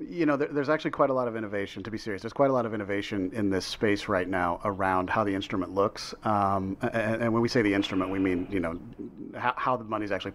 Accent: American